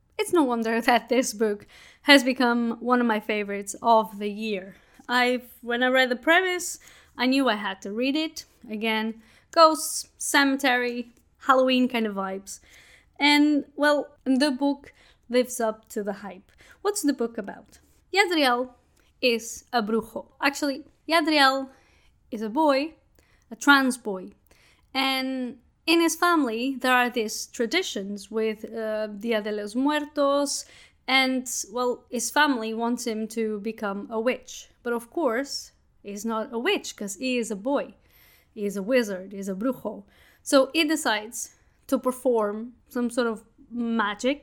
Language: English